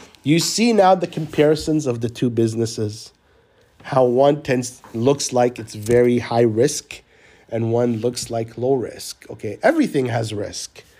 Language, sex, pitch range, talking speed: English, male, 115-150 Hz, 155 wpm